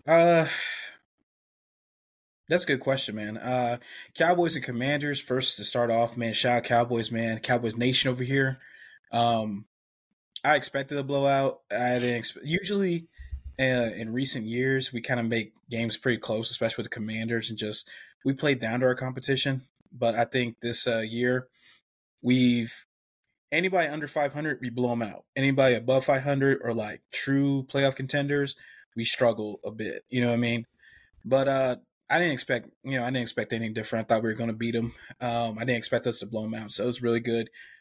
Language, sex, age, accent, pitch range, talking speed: English, male, 20-39, American, 115-140 Hz, 190 wpm